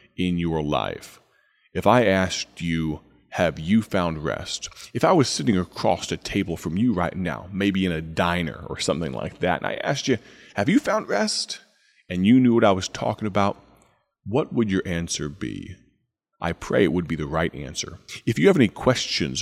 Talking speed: 200 wpm